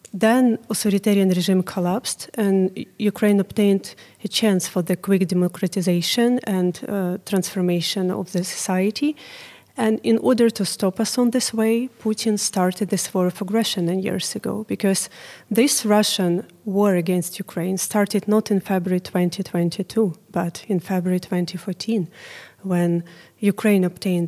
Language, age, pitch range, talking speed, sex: English, 30-49, 180-220 Hz, 135 wpm, female